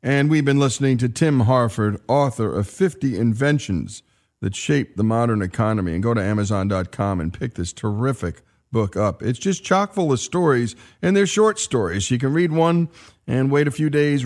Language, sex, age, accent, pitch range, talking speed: English, male, 40-59, American, 110-155 Hz, 190 wpm